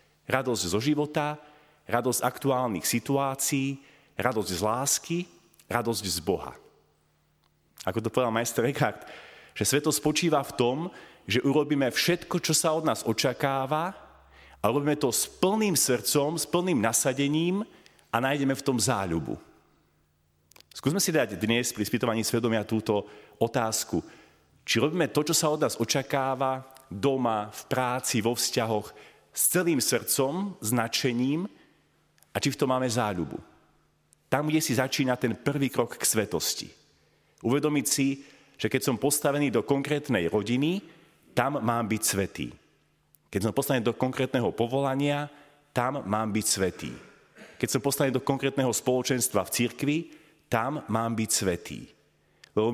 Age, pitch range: 40-59, 115-145 Hz